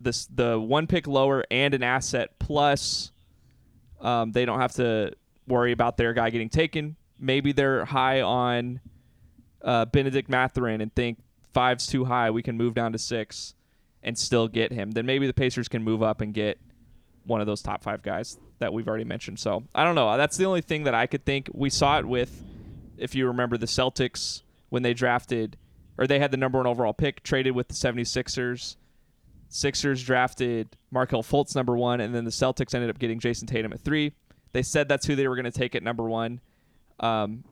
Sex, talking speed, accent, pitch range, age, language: male, 200 wpm, American, 115-135 Hz, 20-39, English